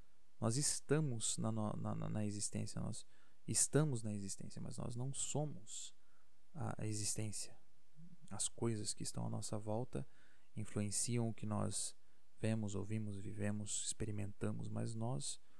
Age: 20-39